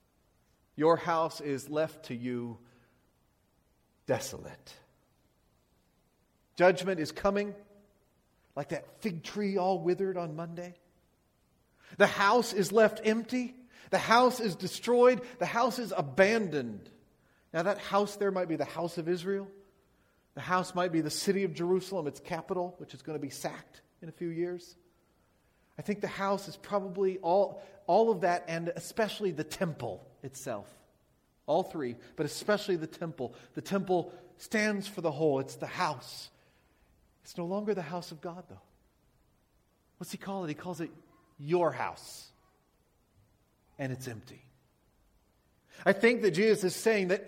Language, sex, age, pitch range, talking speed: English, male, 40-59, 155-200 Hz, 150 wpm